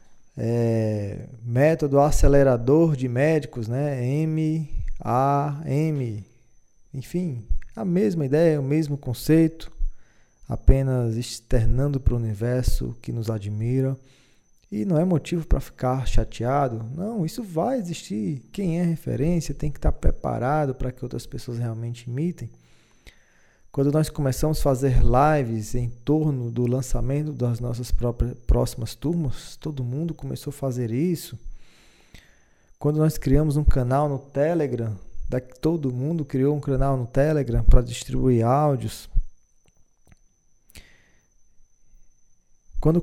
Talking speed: 120 wpm